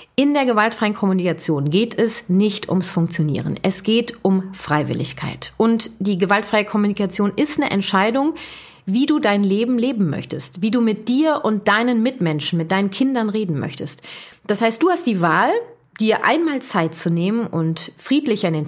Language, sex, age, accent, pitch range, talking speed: German, female, 30-49, German, 175-235 Hz, 170 wpm